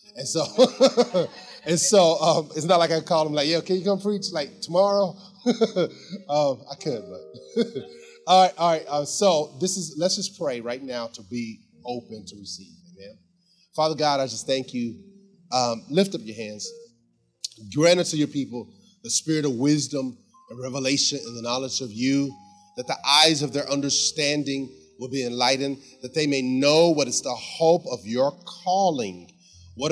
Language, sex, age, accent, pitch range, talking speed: English, male, 30-49, American, 130-175 Hz, 180 wpm